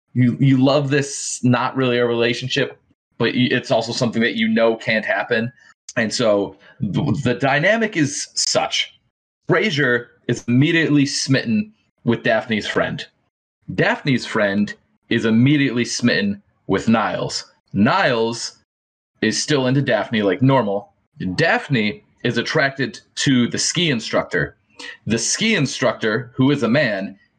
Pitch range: 110-140 Hz